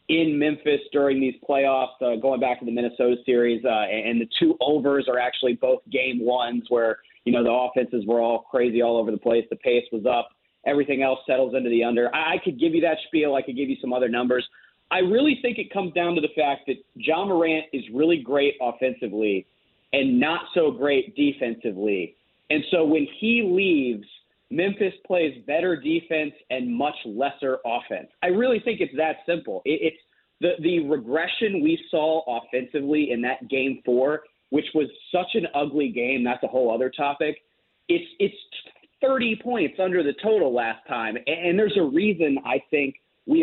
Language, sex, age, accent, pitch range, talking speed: English, male, 30-49, American, 125-175 Hz, 190 wpm